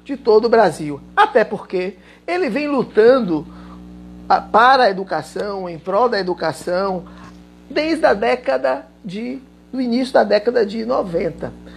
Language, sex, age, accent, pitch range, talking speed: Portuguese, male, 50-69, Brazilian, 190-285 Hz, 135 wpm